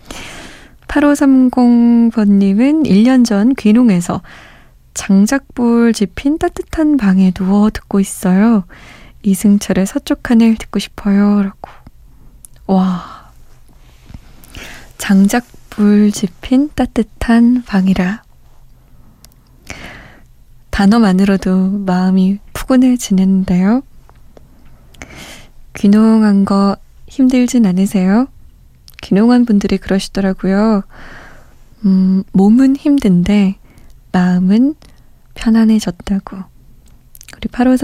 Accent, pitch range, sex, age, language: native, 190-240 Hz, female, 20-39, Korean